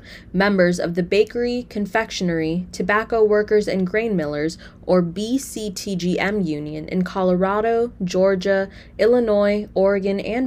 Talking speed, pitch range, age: 110 wpm, 175-220 Hz, 20-39